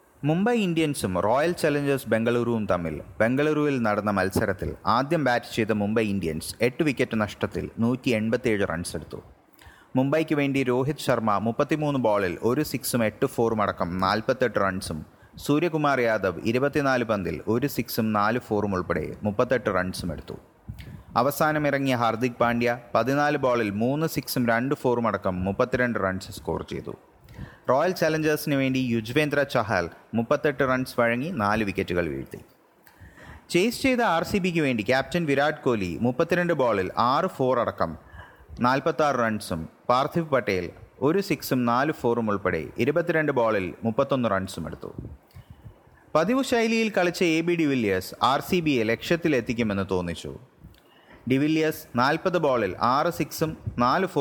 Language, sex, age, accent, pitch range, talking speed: English, male, 30-49, Indian, 105-150 Hz, 100 wpm